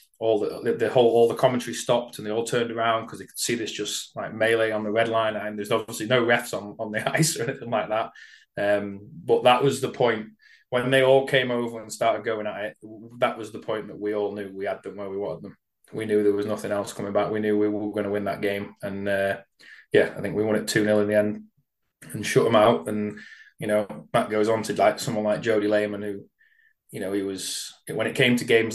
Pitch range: 105-115 Hz